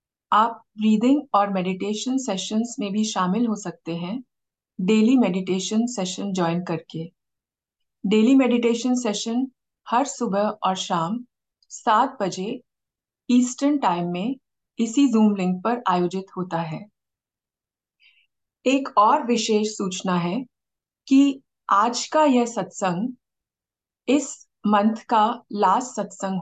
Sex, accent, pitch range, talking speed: female, native, 190-235 Hz, 115 wpm